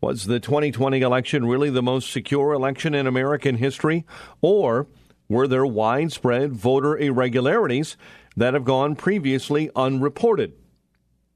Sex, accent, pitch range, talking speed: male, American, 125-165 Hz, 120 wpm